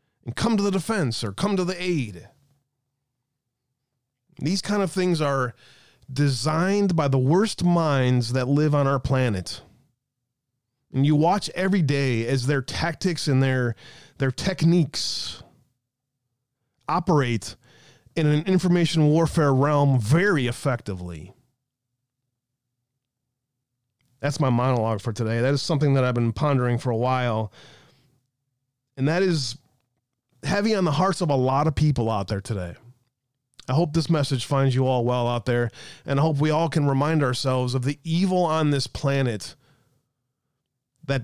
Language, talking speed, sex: English, 145 wpm, male